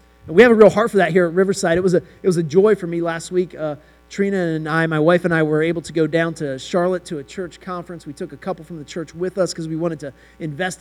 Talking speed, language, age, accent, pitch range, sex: 305 wpm, English, 30-49, American, 145-185 Hz, male